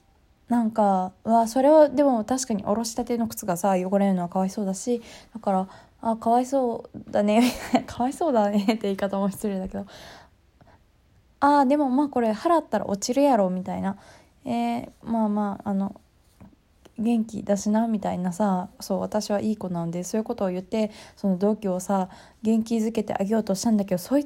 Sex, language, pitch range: female, Japanese, 190-235 Hz